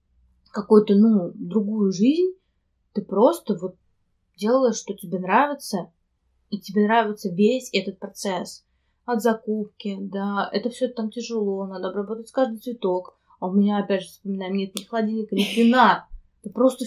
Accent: native